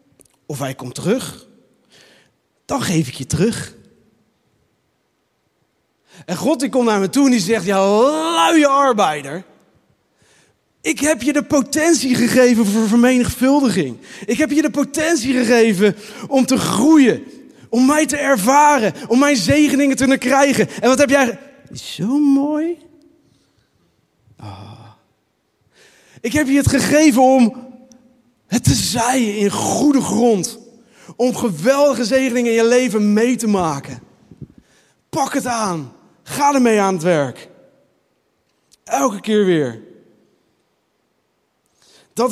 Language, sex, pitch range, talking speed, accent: Dutch, male, 190-270 Hz, 130 wpm, Dutch